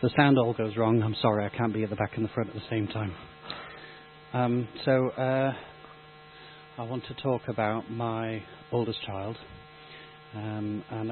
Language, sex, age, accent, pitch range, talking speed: English, male, 30-49, British, 110-130 Hz, 180 wpm